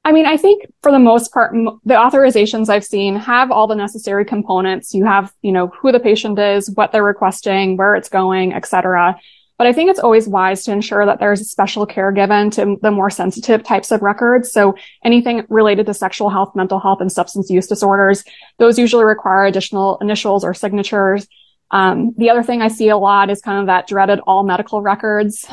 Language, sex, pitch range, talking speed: English, female, 195-225 Hz, 210 wpm